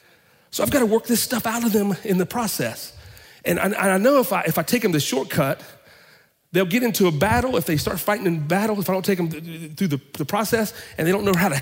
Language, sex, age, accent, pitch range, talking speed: English, male, 40-59, American, 165-225 Hz, 275 wpm